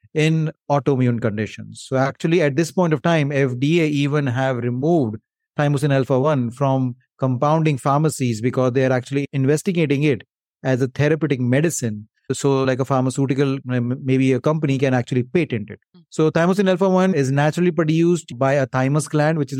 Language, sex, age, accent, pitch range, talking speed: English, male, 30-49, Indian, 130-160 Hz, 160 wpm